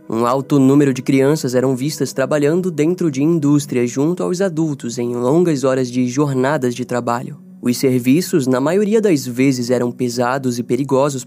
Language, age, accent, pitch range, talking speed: Portuguese, 10-29, Brazilian, 125-160 Hz, 165 wpm